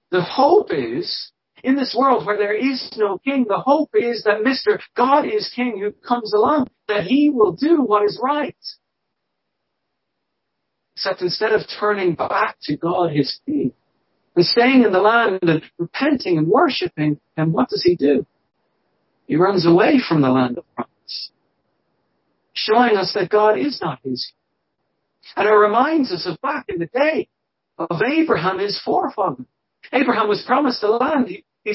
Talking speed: 165 wpm